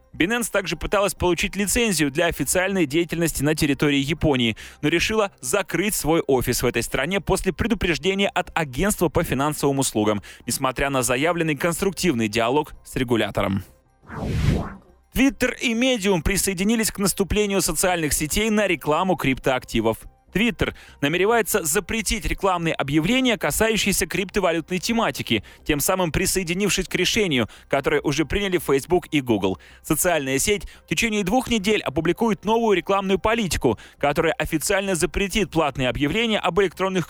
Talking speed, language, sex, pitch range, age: 130 wpm, Russian, male, 145-200 Hz, 20-39